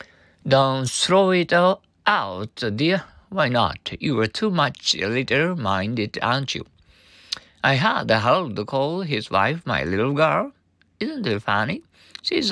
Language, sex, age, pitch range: Japanese, male, 60-79, 100-160 Hz